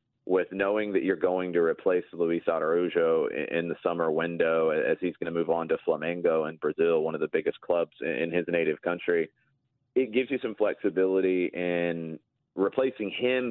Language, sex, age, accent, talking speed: English, male, 30-49, American, 180 wpm